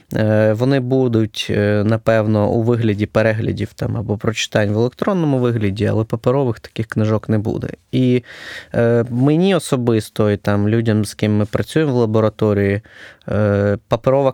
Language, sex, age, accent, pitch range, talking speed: Ukrainian, male, 20-39, native, 105-125 Hz, 120 wpm